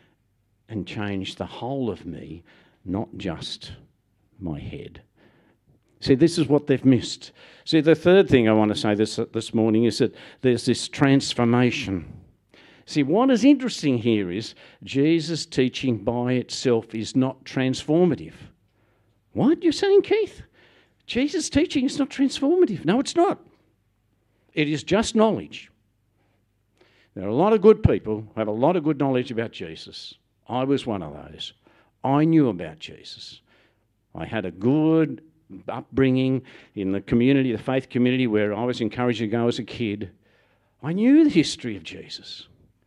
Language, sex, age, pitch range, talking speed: English, male, 60-79, 110-155 Hz, 155 wpm